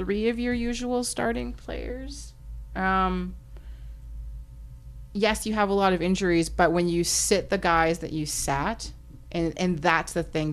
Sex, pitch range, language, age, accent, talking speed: female, 150-190 Hz, English, 30-49, American, 160 wpm